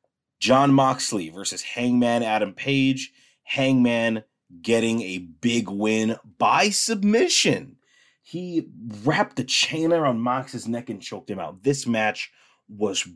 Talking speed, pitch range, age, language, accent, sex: 125 wpm, 105-135 Hz, 30-49, English, American, male